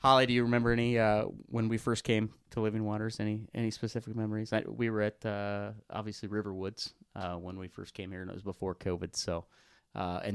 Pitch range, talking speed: 100-120 Hz, 220 wpm